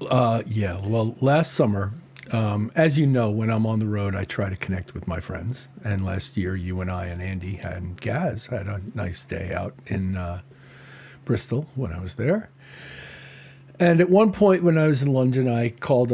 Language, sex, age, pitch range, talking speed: English, male, 50-69, 100-135 Hz, 205 wpm